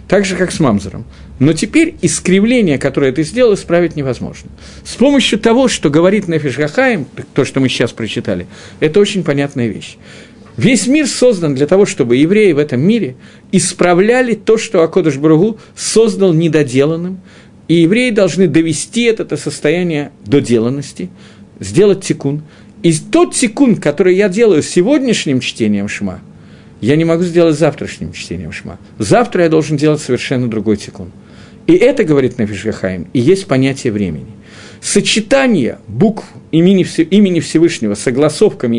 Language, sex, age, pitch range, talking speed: Russian, male, 50-69, 125-205 Hz, 140 wpm